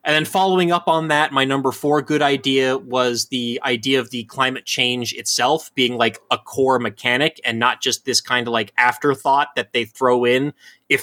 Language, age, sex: English, 20-39, male